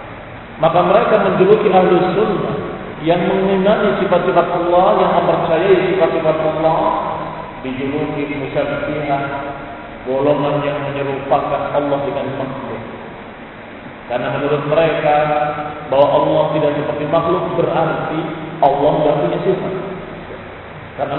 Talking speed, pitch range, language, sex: 100 wpm, 150-190 Hz, Indonesian, male